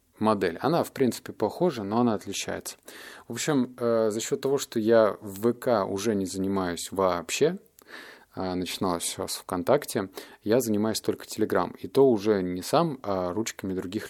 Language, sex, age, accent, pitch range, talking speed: Russian, male, 20-39, native, 90-115 Hz, 160 wpm